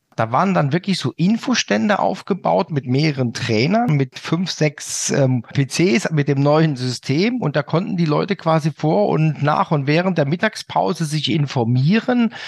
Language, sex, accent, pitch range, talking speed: German, male, German, 130-170 Hz, 165 wpm